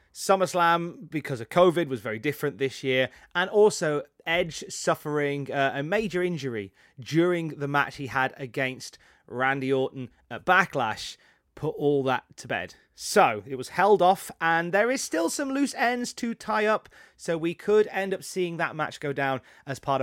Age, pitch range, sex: 30-49, 140-205 Hz, male